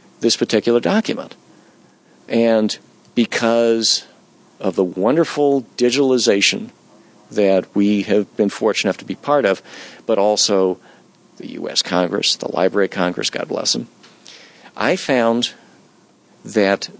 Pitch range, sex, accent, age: 95-120 Hz, male, American, 50-69